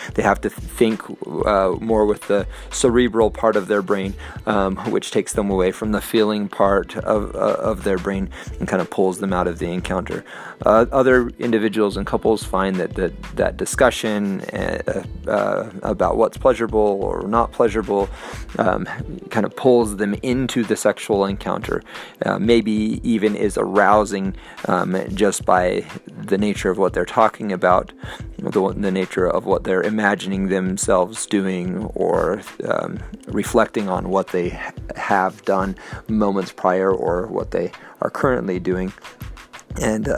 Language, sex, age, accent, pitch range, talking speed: English, male, 30-49, American, 95-110 Hz, 155 wpm